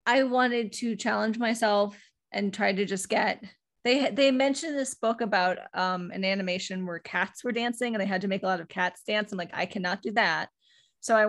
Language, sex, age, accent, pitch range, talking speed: English, female, 20-39, American, 195-245 Hz, 220 wpm